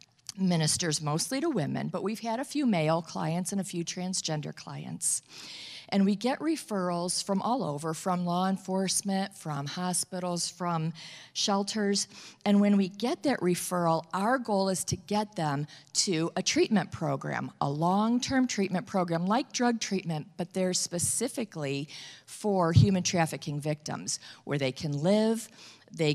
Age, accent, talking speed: 50-69, American, 150 wpm